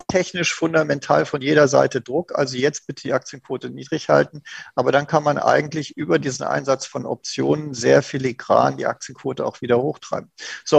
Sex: male